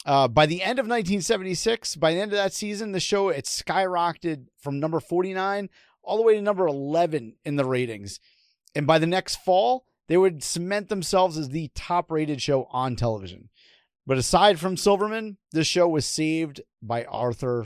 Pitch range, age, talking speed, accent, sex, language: 135-190 Hz, 30-49, 185 wpm, American, male, English